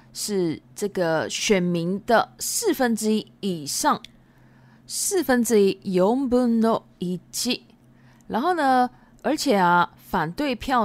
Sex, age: female, 20-39